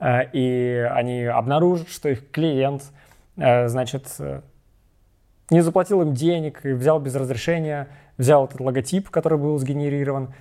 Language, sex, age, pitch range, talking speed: Russian, male, 20-39, 125-155 Hz, 120 wpm